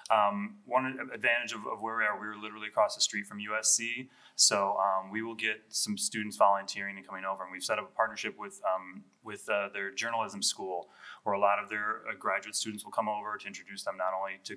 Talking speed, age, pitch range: 235 wpm, 20-39, 100-110 Hz